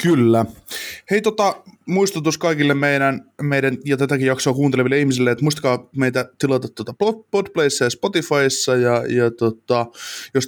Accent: native